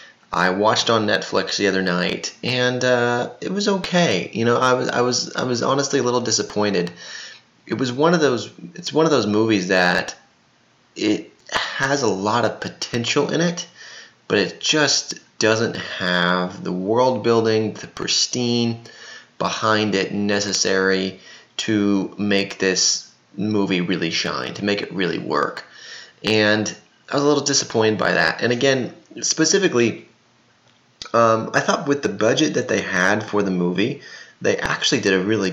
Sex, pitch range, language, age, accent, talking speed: male, 95-125 Hz, English, 20-39, American, 160 wpm